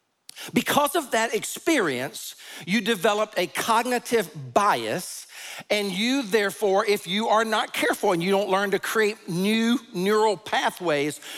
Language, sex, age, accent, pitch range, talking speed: English, male, 50-69, American, 180-230 Hz, 135 wpm